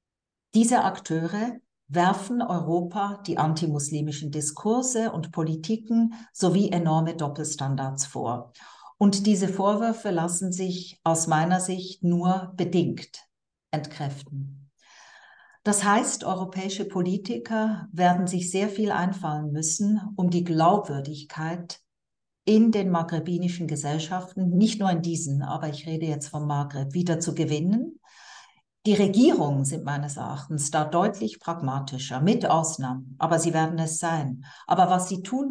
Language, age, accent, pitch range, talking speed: German, 50-69, German, 155-195 Hz, 125 wpm